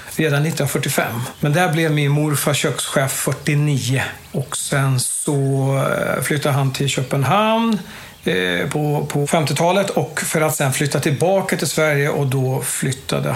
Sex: male